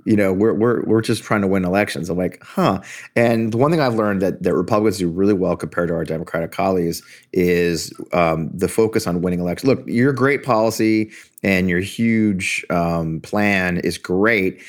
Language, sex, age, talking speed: English, male, 30-49, 195 wpm